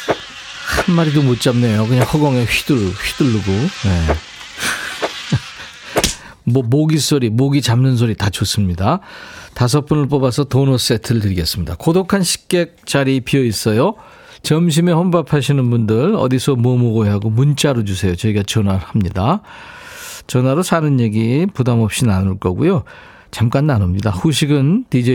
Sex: male